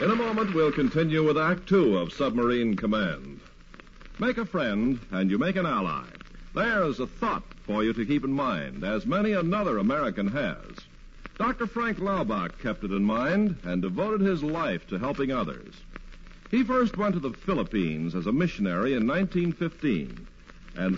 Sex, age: male, 60-79